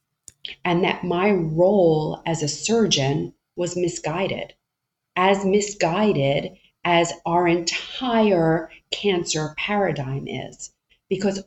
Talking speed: 95 wpm